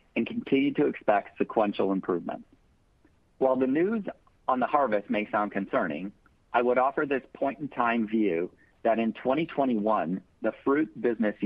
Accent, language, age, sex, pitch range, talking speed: American, English, 50-69, male, 100-120 Hz, 150 wpm